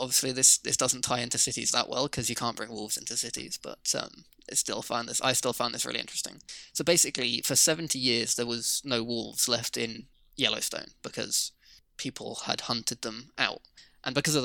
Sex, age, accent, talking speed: male, 20-39, British, 205 wpm